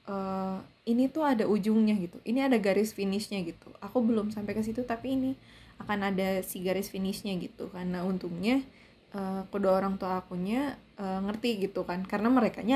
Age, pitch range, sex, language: 20-39, 200-260 Hz, female, Indonesian